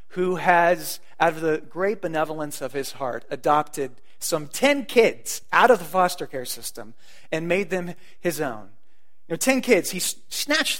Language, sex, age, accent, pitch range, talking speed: English, male, 30-49, American, 170-220 Hz, 170 wpm